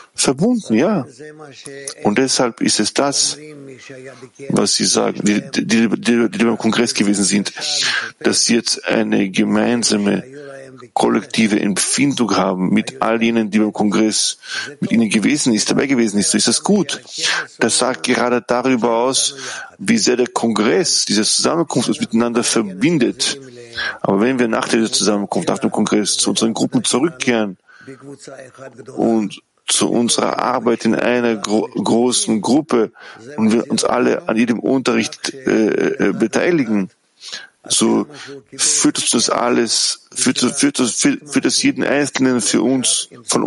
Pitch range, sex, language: 110-135 Hz, male, German